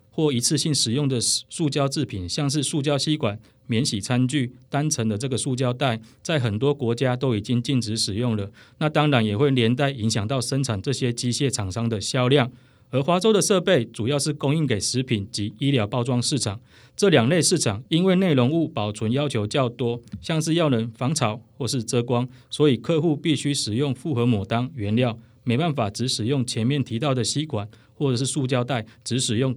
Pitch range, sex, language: 115-145 Hz, male, Chinese